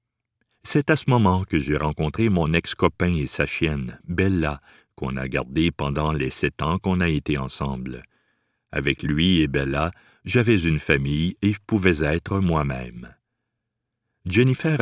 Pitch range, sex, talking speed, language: 75-115 Hz, male, 150 wpm, French